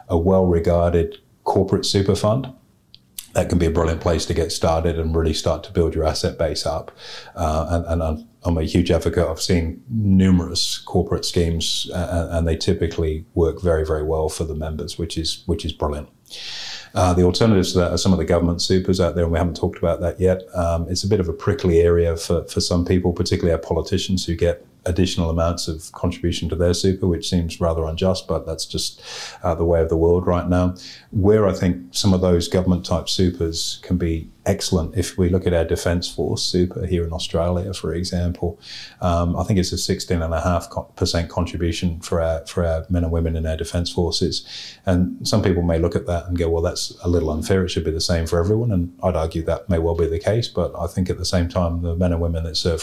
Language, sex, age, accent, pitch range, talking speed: English, male, 30-49, British, 80-90 Hz, 230 wpm